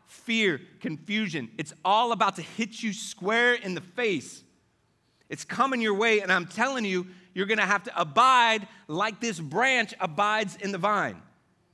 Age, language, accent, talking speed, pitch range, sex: 30-49, English, American, 170 wpm, 185-250 Hz, male